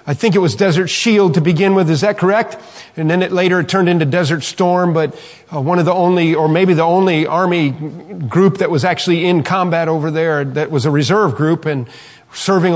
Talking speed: 215 wpm